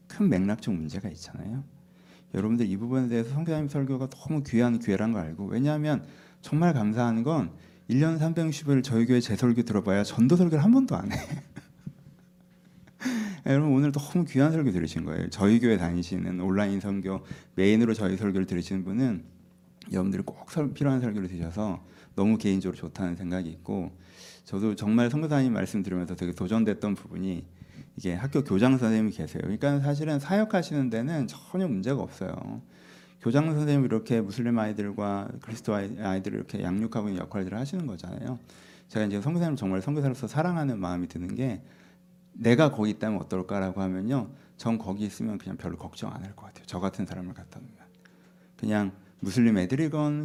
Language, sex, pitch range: Korean, male, 100-150 Hz